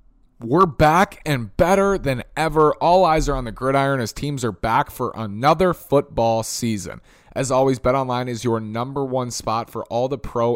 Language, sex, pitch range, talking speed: English, male, 110-140 Hz, 180 wpm